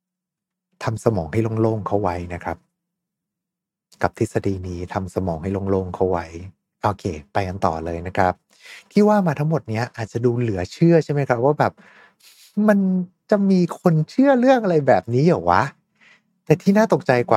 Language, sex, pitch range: Thai, male, 100-145 Hz